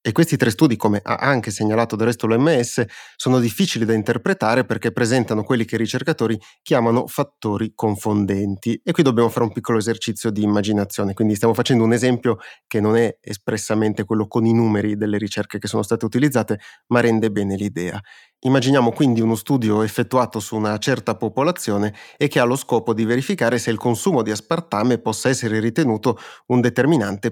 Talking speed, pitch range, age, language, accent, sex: 180 wpm, 110-130 Hz, 30-49, Italian, native, male